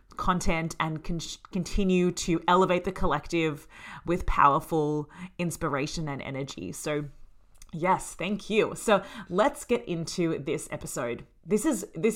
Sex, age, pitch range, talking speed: female, 30-49, 150-185 Hz, 120 wpm